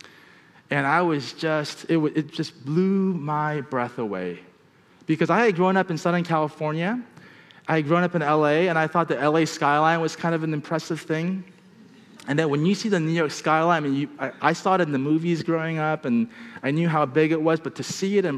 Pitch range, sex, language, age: 145-180 Hz, male, English, 30-49